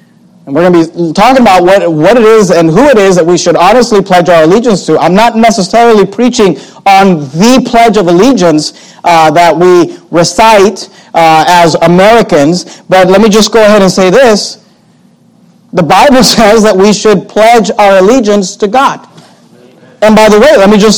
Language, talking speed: English, 190 wpm